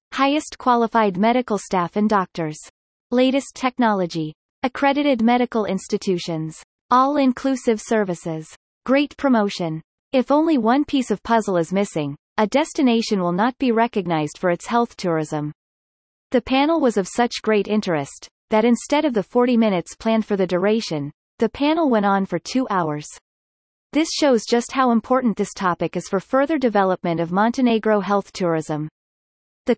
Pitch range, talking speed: 180-245 Hz, 145 wpm